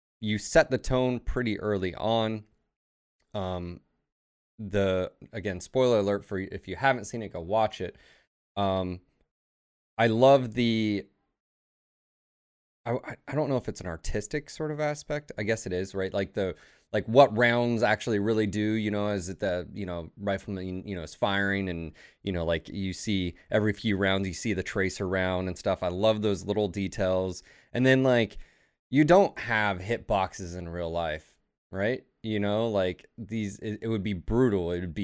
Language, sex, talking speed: English, male, 180 wpm